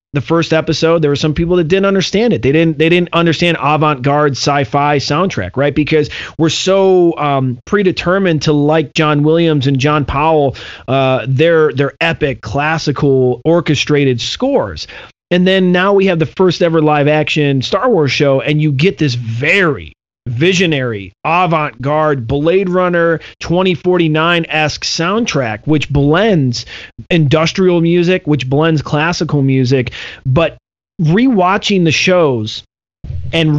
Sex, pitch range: male, 140-175 Hz